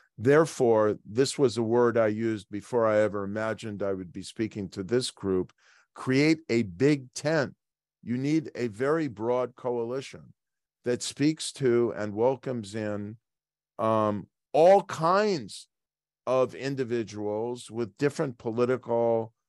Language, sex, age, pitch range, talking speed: English, male, 40-59, 110-145 Hz, 130 wpm